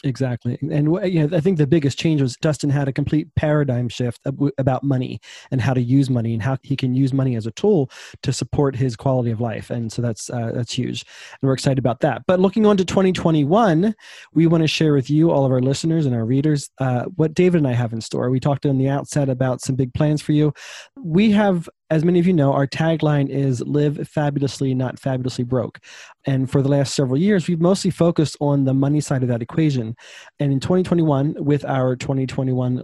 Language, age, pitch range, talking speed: English, 20-39, 130-160 Hz, 225 wpm